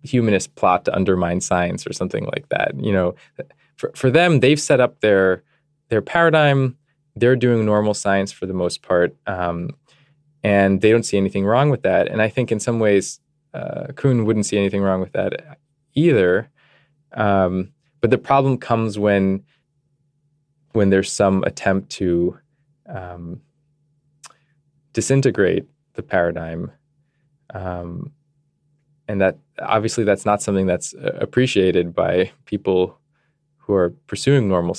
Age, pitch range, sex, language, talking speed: 20-39, 100-145 Hz, male, English, 140 wpm